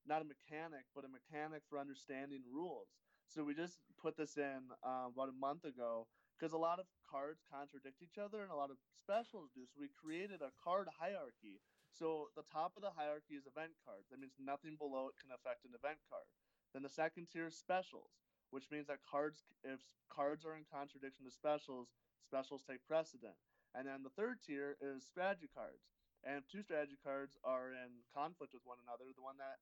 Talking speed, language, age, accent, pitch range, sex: 205 wpm, English, 20-39, American, 130-150 Hz, male